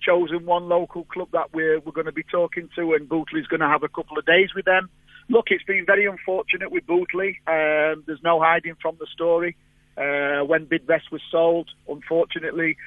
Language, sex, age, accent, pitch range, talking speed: English, male, 40-59, British, 145-170 Hz, 200 wpm